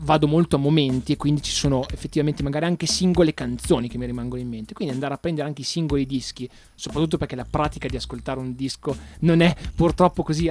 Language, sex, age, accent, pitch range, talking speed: Italian, male, 30-49, native, 125-160 Hz, 215 wpm